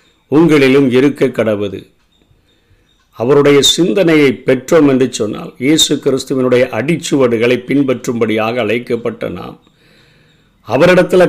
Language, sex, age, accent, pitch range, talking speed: Tamil, male, 50-69, native, 120-150 Hz, 80 wpm